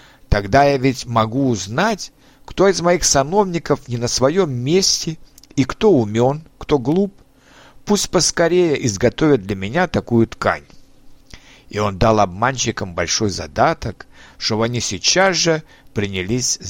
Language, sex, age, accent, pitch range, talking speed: Russian, male, 60-79, native, 110-160 Hz, 130 wpm